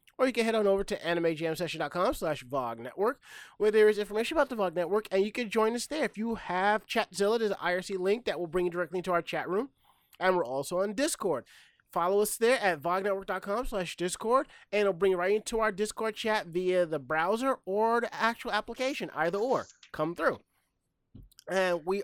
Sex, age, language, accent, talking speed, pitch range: male, 30-49, English, American, 200 wpm, 170-215 Hz